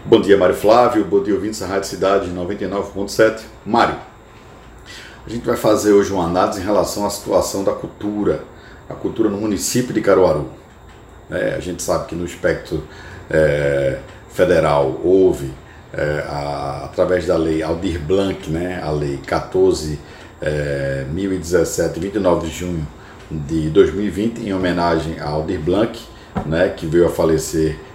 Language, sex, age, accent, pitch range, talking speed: Portuguese, male, 50-69, Brazilian, 80-100 Hz, 135 wpm